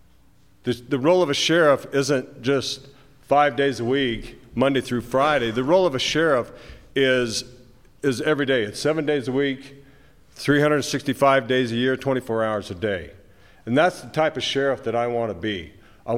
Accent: American